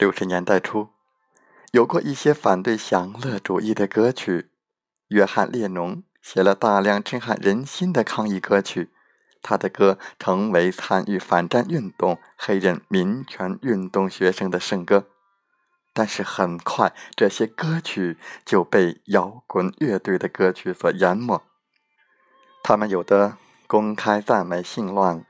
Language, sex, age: Chinese, male, 20-39